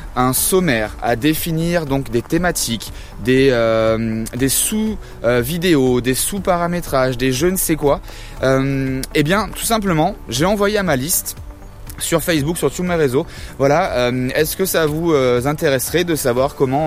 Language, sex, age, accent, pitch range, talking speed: French, male, 20-39, French, 130-170 Hz, 165 wpm